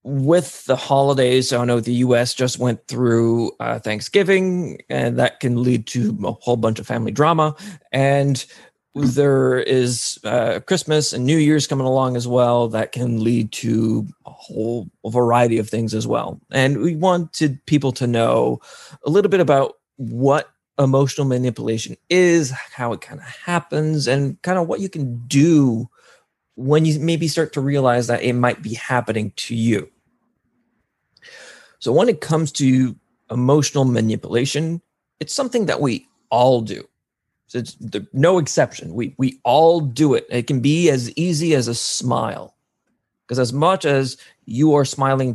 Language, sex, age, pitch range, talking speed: English, male, 30-49, 120-150 Hz, 165 wpm